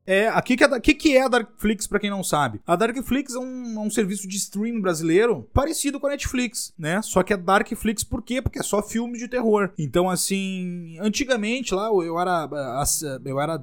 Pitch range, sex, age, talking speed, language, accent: 155-215 Hz, male, 20-39, 195 wpm, Portuguese, Brazilian